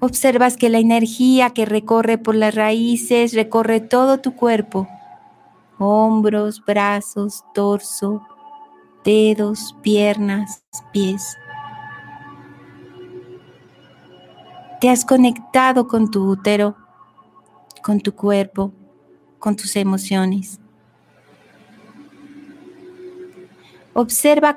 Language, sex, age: Spanish, female, 40-59